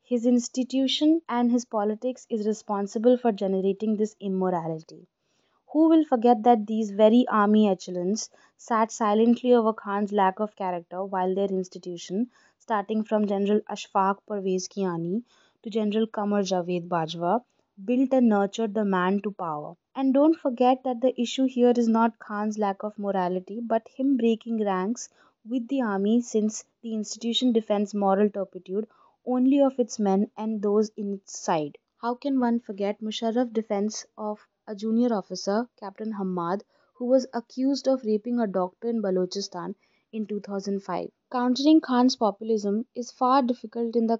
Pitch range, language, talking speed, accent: 200-240 Hz, English, 150 wpm, Indian